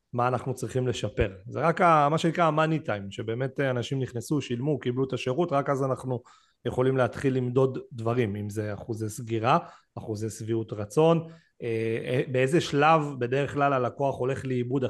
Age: 30-49